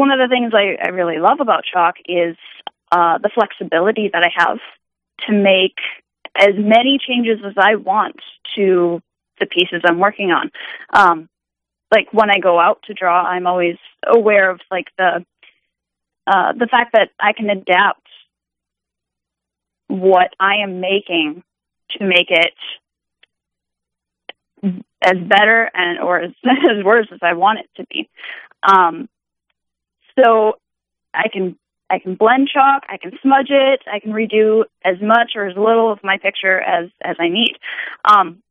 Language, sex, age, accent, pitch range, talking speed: English, female, 20-39, American, 175-220 Hz, 155 wpm